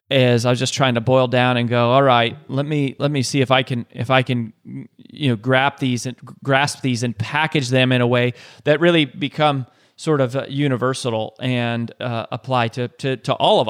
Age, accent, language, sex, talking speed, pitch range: 30-49, American, English, male, 225 wpm, 125-155 Hz